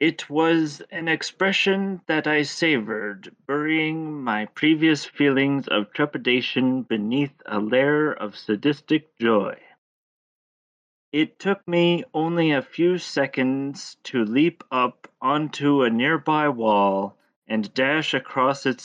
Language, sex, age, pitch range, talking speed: English, male, 40-59, 115-150 Hz, 120 wpm